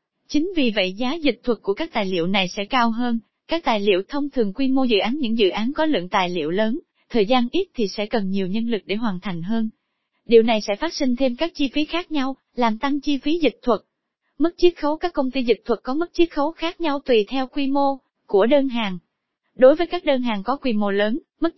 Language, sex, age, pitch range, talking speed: Vietnamese, female, 20-39, 220-290 Hz, 255 wpm